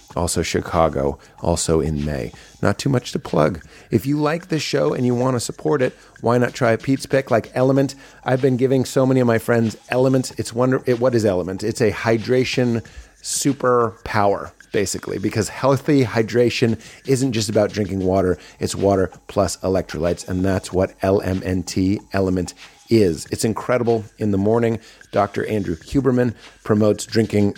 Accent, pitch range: American, 100-120 Hz